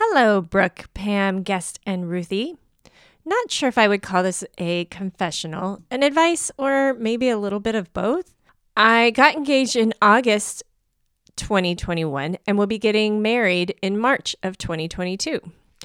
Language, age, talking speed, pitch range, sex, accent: English, 30-49, 150 wpm, 175-245 Hz, female, American